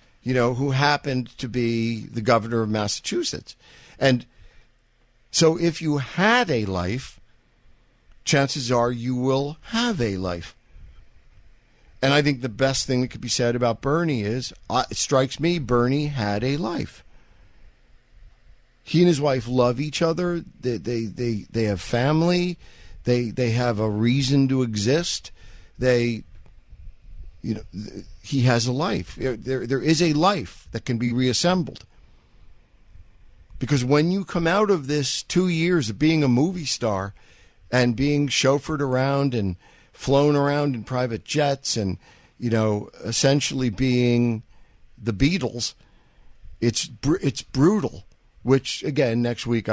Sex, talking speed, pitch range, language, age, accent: male, 145 wpm, 105-140 Hz, English, 50-69, American